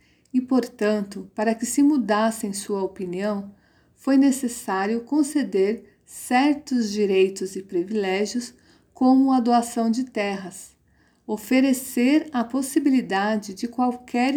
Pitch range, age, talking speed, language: 205-255 Hz, 50-69, 105 wpm, Portuguese